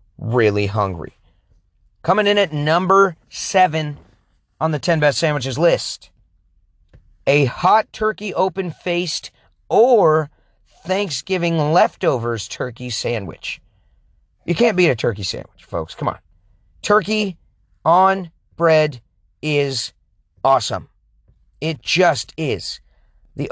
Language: English